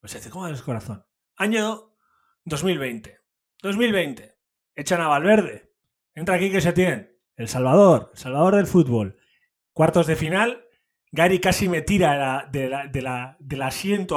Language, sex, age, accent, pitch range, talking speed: Spanish, male, 30-49, Spanish, 135-180 Hz, 170 wpm